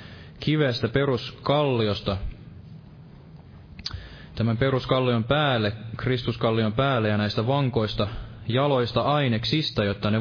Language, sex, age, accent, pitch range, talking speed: Finnish, male, 20-39, native, 110-130 Hz, 80 wpm